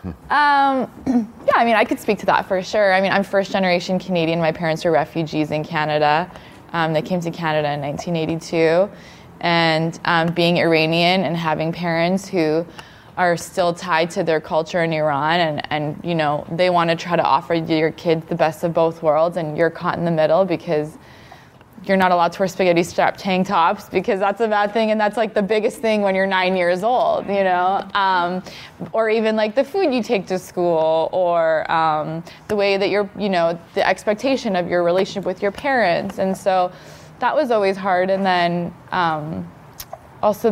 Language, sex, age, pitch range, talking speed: English, female, 20-39, 165-195 Hz, 195 wpm